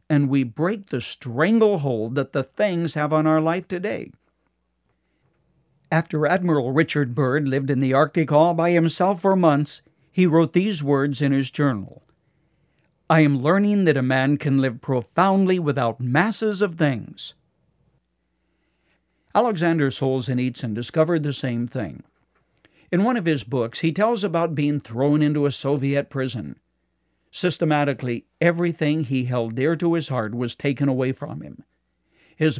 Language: English